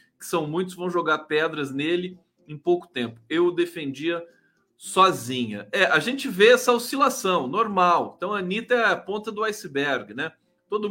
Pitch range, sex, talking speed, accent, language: 135-205 Hz, male, 165 wpm, Brazilian, Portuguese